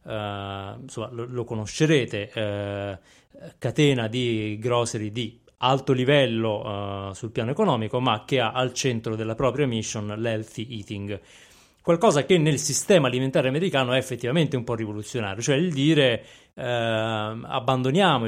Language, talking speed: Italian, 135 wpm